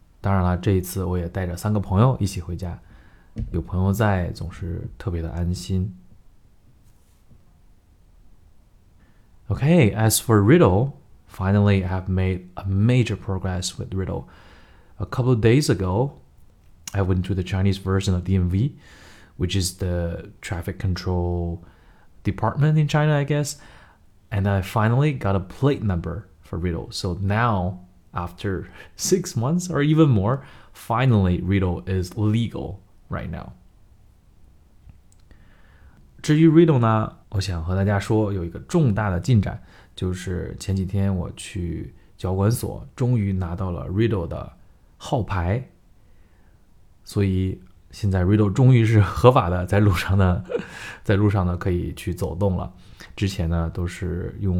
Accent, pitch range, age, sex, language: native, 90-110 Hz, 30-49, male, Chinese